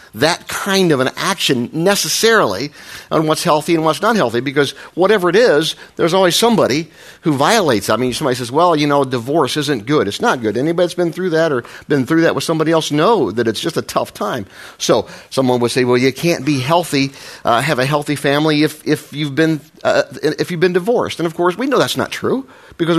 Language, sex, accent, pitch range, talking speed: English, male, American, 125-170 Hz, 225 wpm